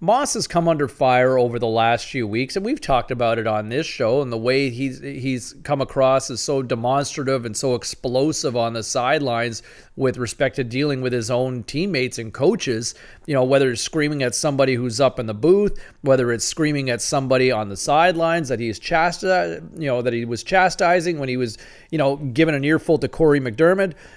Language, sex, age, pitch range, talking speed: English, male, 40-59, 125-160 Hz, 210 wpm